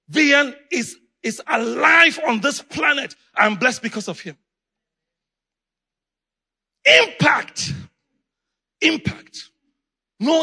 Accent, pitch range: Nigerian, 180-260 Hz